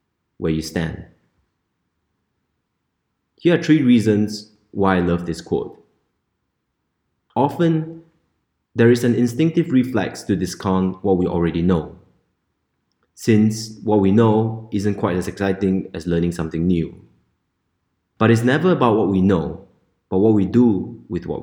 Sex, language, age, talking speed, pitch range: male, English, 30-49, 135 wpm, 90-120 Hz